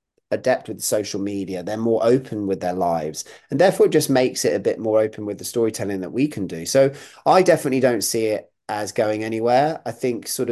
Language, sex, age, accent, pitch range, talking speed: English, male, 30-49, British, 100-125 Hz, 215 wpm